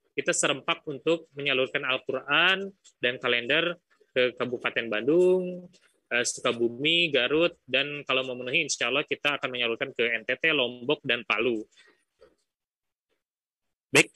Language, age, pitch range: Indonesian, 20-39, 140-170 Hz